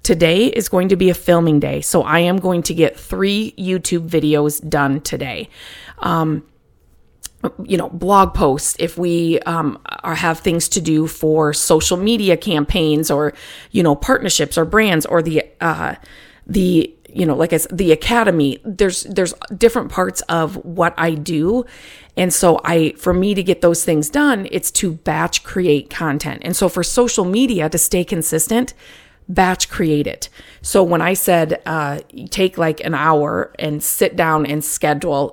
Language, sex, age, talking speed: English, female, 30-49, 170 wpm